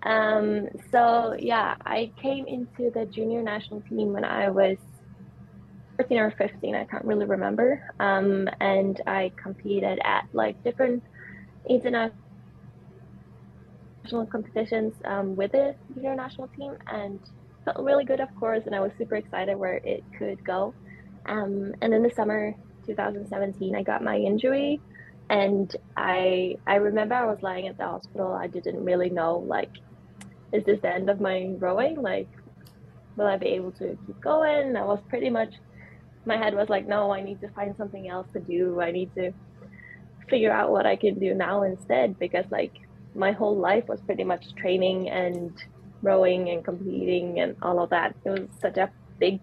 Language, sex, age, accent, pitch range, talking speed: English, female, 10-29, American, 190-220 Hz, 170 wpm